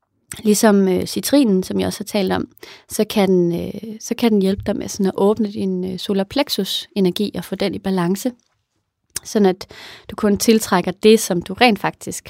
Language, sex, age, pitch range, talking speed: English, female, 30-49, 185-220 Hz, 165 wpm